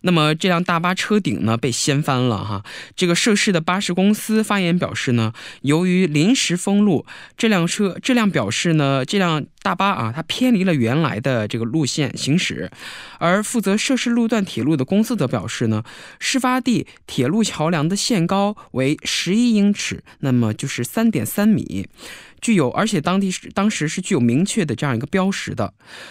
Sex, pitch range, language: male, 135-210 Hz, Korean